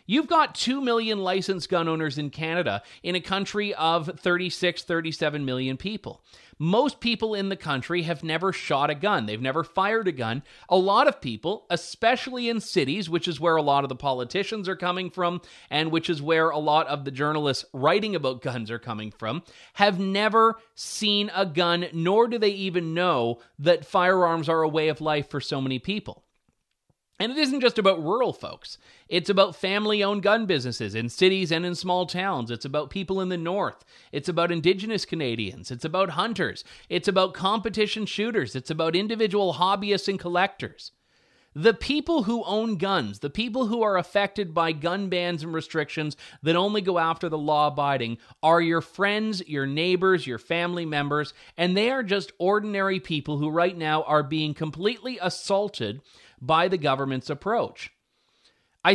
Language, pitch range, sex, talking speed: English, 155-200 Hz, male, 175 wpm